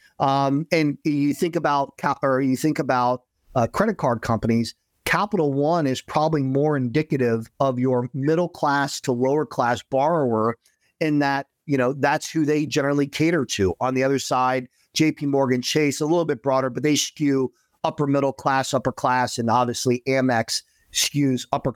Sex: male